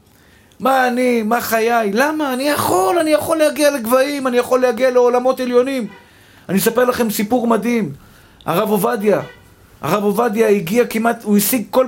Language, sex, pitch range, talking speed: Hebrew, male, 190-245 Hz, 150 wpm